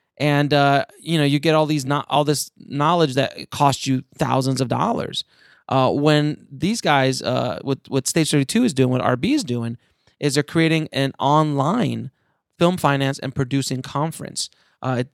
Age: 30-49